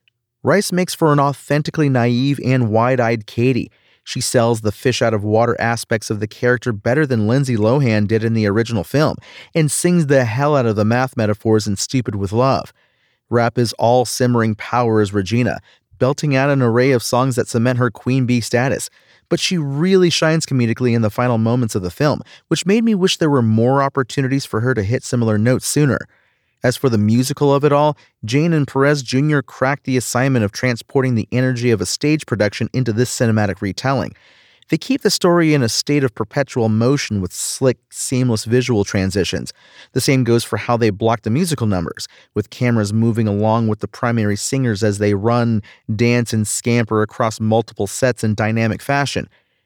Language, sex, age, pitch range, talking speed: English, male, 30-49, 110-135 Hz, 185 wpm